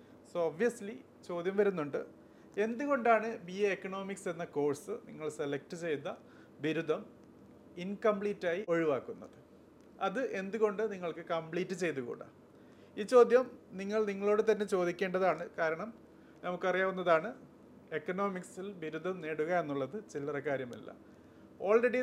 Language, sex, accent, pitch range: Malayalam, male, native, 155-205 Hz